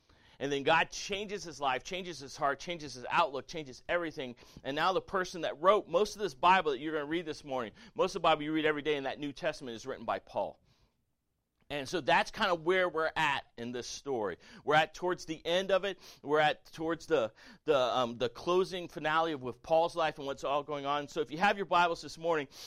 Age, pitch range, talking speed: 40-59, 125-165 Hz, 240 wpm